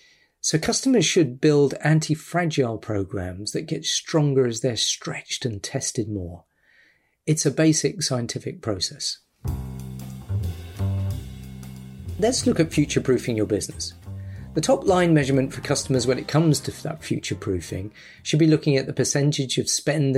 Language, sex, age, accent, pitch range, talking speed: English, male, 40-59, British, 115-150 Hz, 135 wpm